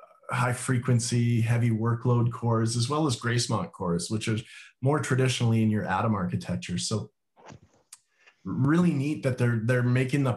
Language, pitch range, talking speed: English, 115-135 Hz, 150 wpm